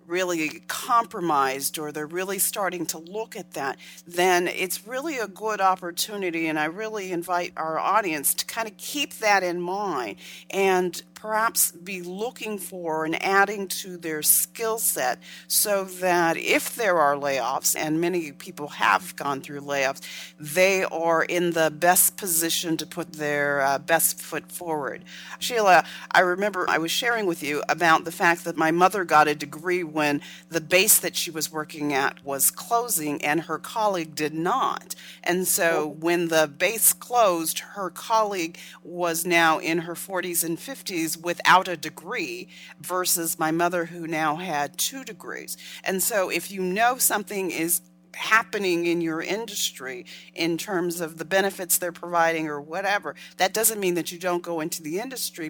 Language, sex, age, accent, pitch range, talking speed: English, female, 40-59, American, 160-190 Hz, 165 wpm